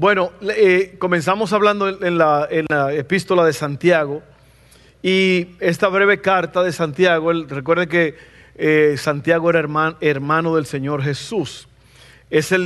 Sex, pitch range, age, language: male, 150-185 Hz, 50-69, Spanish